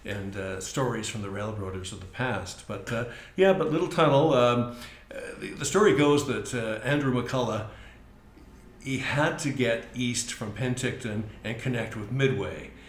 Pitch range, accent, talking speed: 100-125 Hz, American, 170 wpm